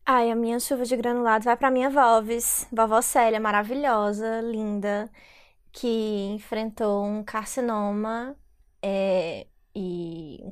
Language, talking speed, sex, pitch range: Portuguese, 120 wpm, female, 210-245 Hz